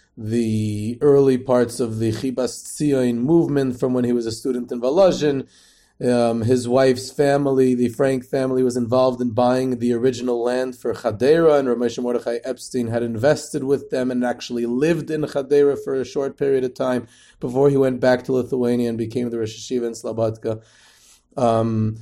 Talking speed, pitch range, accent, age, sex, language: 175 wpm, 125-150 Hz, American, 30-49, male, English